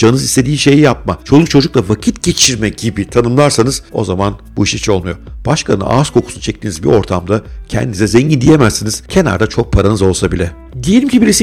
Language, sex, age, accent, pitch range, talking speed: Turkish, male, 50-69, native, 105-155 Hz, 175 wpm